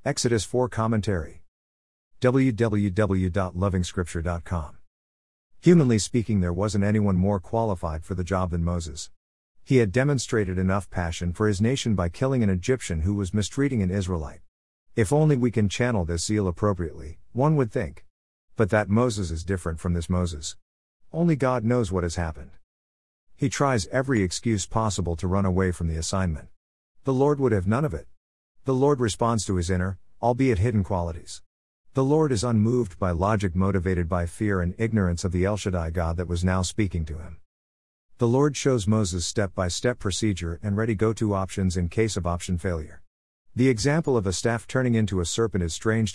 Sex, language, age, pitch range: male, English, 50-69, 85-115 Hz